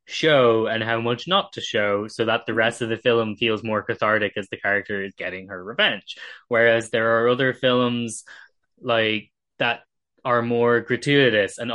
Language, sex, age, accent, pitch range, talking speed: English, male, 10-29, Irish, 110-125 Hz, 180 wpm